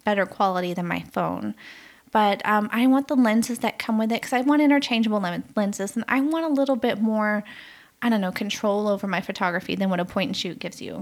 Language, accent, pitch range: English, American, 185-240 Hz